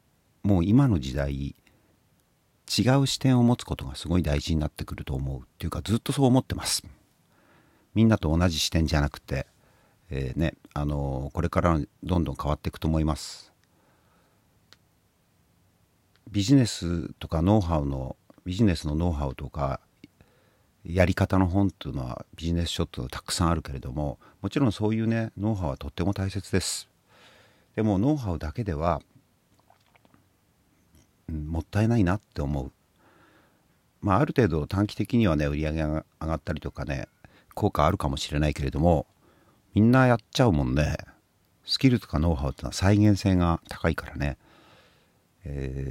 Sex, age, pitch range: male, 50-69, 75-100 Hz